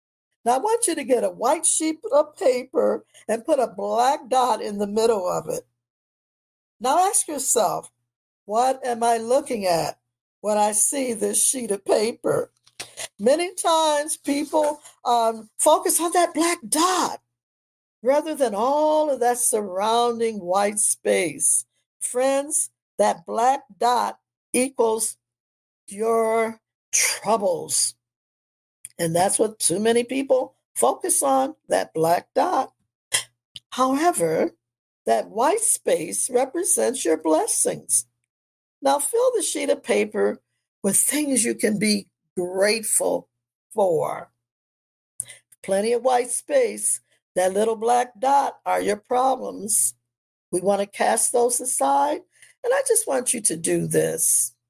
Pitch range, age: 185-295 Hz, 60-79